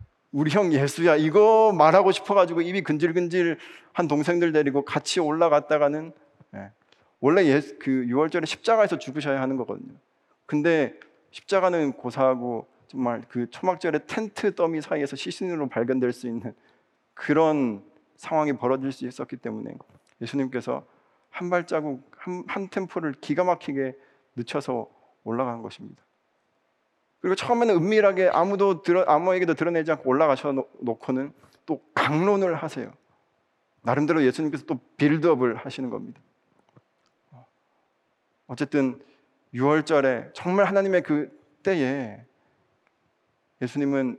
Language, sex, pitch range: Korean, male, 130-175 Hz